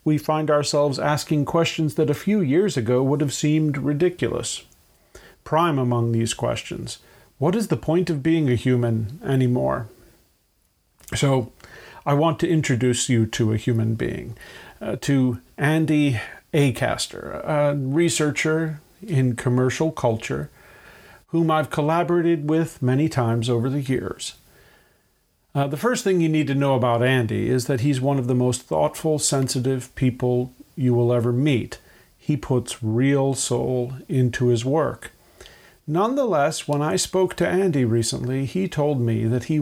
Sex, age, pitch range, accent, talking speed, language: male, 50-69, 125-155 Hz, American, 150 wpm, English